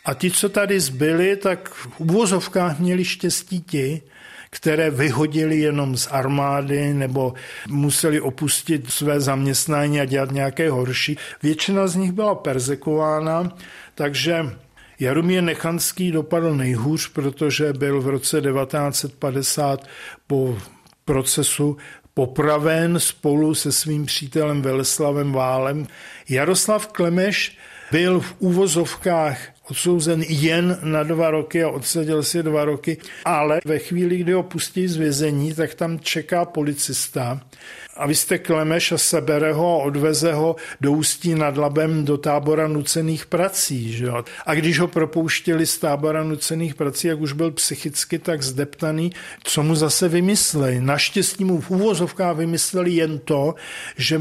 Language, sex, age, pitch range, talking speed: Czech, male, 50-69, 145-170 Hz, 135 wpm